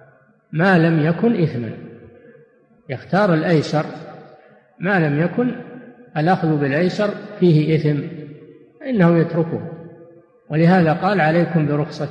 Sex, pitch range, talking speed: male, 150-175 Hz, 95 wpm